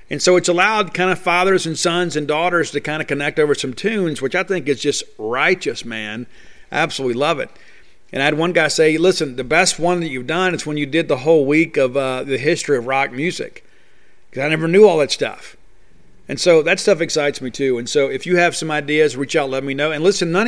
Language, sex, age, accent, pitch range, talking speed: English, male, 40-59, American, 140-170 Hz, 250 wpm